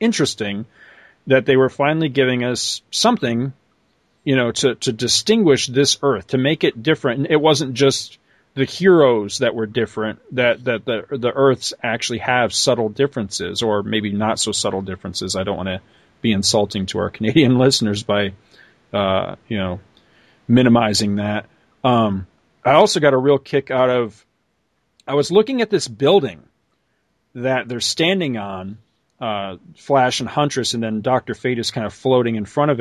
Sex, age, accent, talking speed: male, 40-59, American, 170 wpm